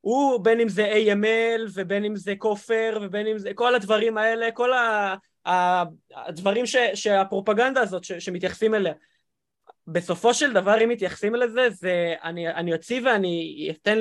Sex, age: male, 20-39